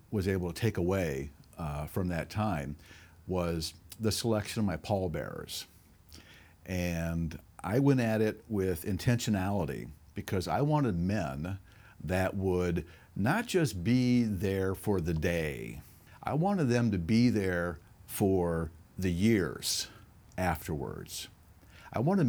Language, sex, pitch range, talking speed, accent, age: English, male, 85-115 Hz, 125 wpm, American, 50-69